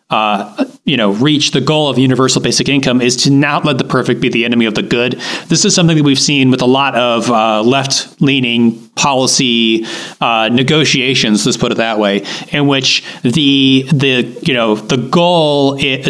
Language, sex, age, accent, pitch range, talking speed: English, male, 30-49, American, 120-150 Hz, 190 wpm